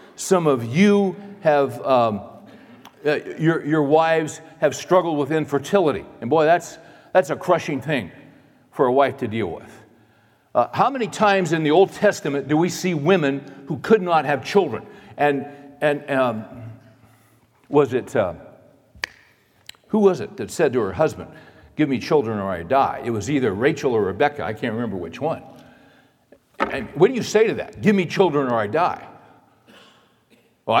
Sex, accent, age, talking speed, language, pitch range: male, American, 60-79, 170 wpm, English, 145-190 Hz